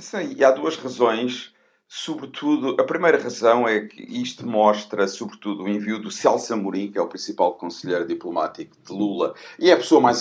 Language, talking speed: Portuguese, 190 wpm